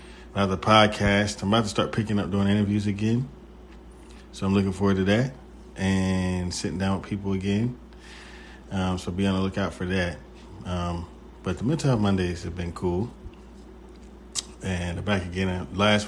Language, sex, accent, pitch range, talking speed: English, male, American, 90-105 Hz, 160 wpm